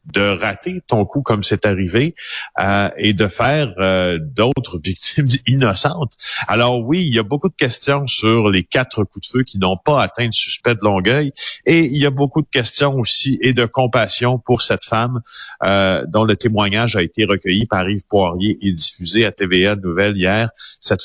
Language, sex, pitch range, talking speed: French, male, 95-120 Hz, 195 wpm